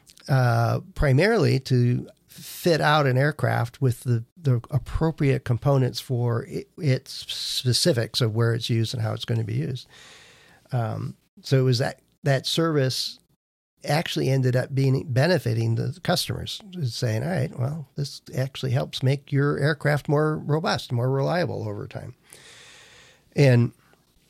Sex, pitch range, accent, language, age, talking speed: male, 120-145 Hz, American, English, 50-69, 145 wpm